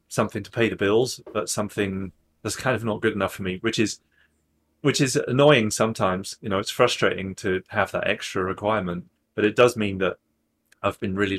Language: English